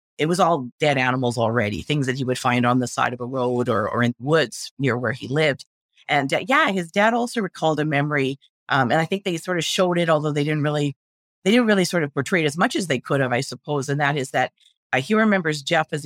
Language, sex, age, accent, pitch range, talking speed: English, female, 50-69, American, 130-160 Hz, 270 wpm